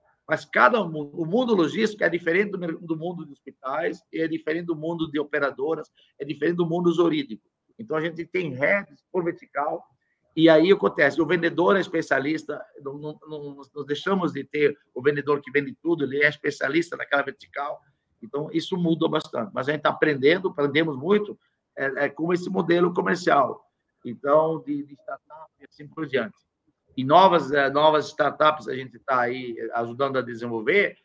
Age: 50-69